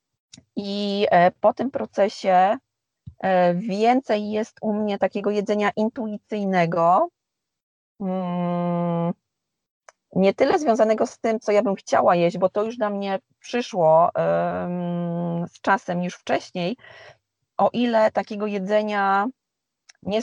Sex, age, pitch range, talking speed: female, 30-49, 175-205 Hz, 105 wpm